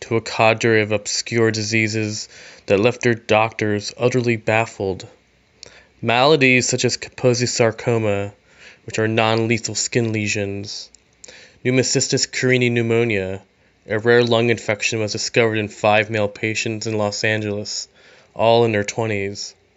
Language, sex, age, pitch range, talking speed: German, male, 20-39, 105-115 Hz, 130 wpm